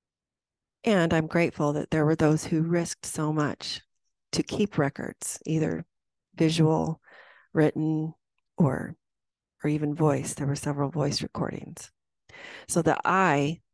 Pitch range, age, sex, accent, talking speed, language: 145-175 Hz, 40-59, female, American, 125 wpm, English